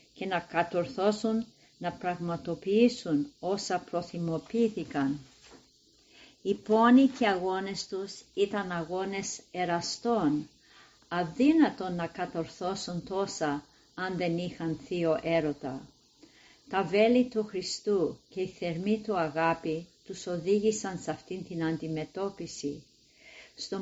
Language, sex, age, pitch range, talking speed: Greek, female, 50-69, 165-200 Hz, 105 wpm